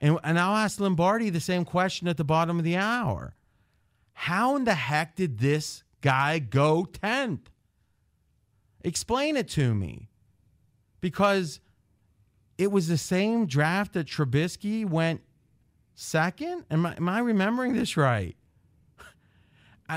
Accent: American